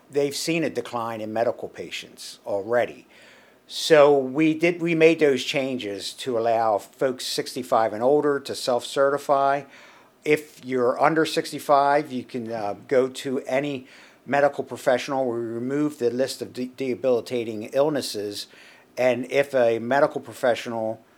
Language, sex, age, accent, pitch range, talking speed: English, male, 50-69, American, 115-140 Hz, 135 wpm